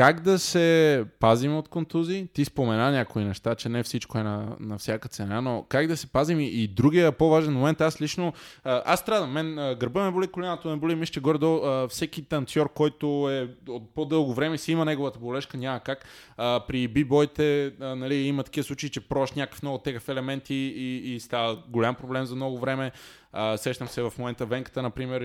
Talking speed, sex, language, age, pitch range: 195 wpm, male, Bulgarian, 20-39, 115-145 Hz